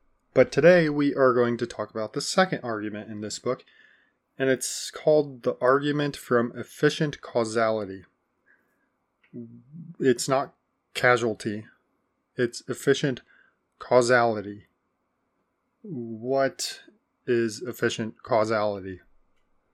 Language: English